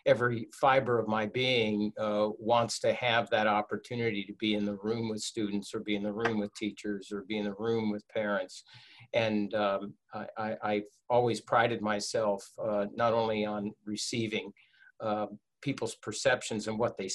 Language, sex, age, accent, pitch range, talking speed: English, male, 50-69, American, 105-115 Hz, 180 wpm